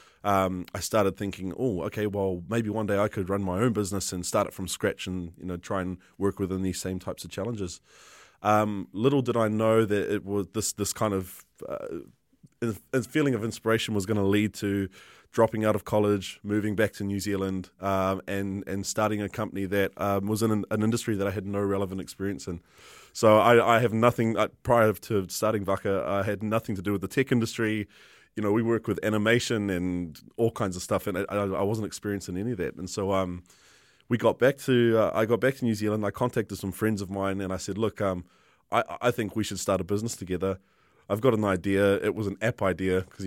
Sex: male